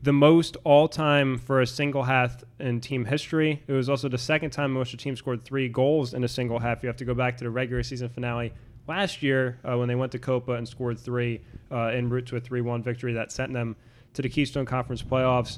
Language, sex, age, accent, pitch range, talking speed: English, male, 20-39, American, 125-145 Hz, 245 wpm